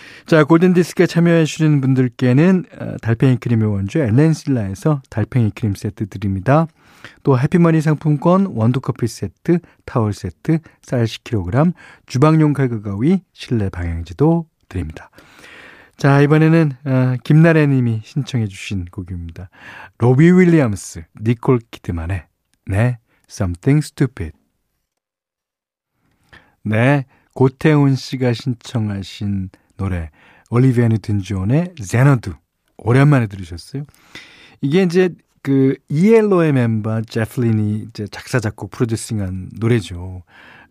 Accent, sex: native, male